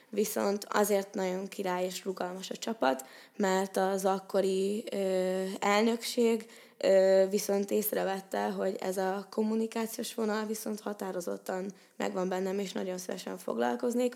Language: Hungarian